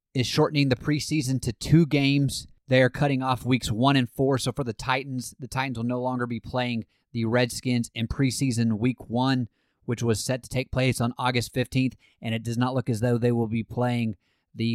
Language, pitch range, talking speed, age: English, 115-130 Hz, 215 wpm, 30-49